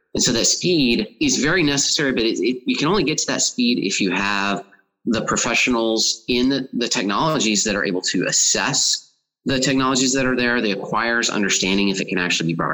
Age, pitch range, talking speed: 30-49, 95-125 Hz, 210 wpm